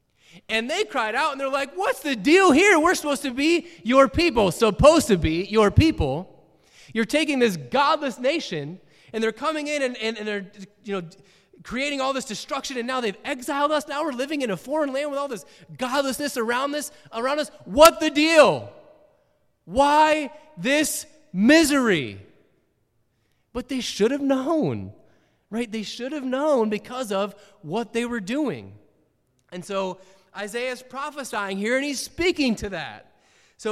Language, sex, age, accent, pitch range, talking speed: English, male, 30-49, American, 180-280 Hz, 165 wpm